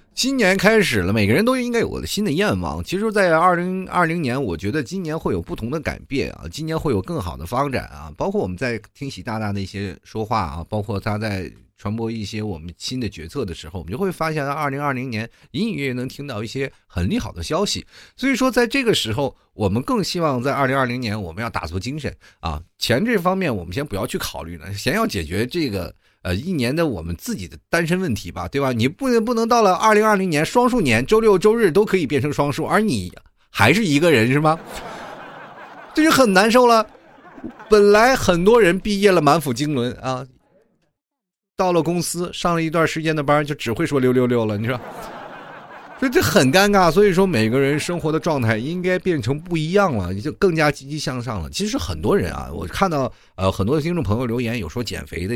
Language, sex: Chinese, male